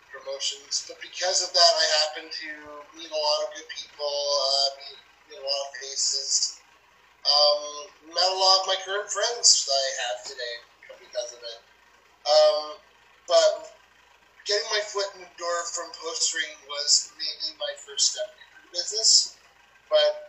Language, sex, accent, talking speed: English, male, American, 165 wpm